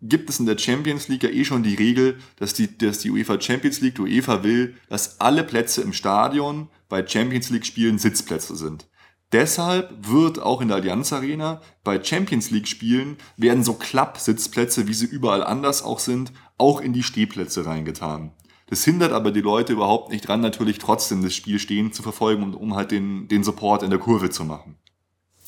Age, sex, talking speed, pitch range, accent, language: 30-49, male, 195 wpm, 105-135 Hz, German, German